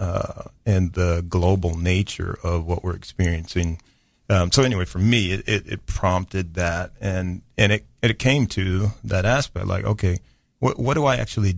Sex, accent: male, American